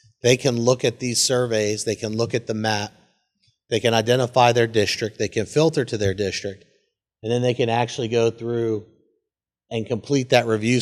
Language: English